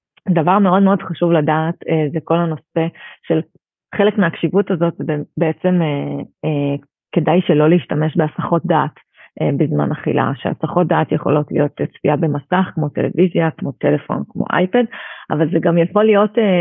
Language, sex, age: Hebrew, female, 30-49